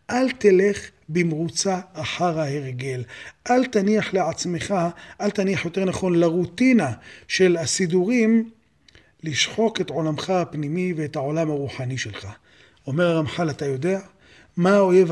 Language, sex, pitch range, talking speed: Hebrew, male, 155-205 Hz, 115 wpm